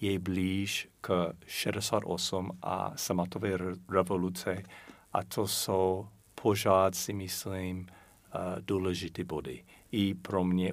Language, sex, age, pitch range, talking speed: Czech, male, 50-69, 90-110 Hz, 100 wpm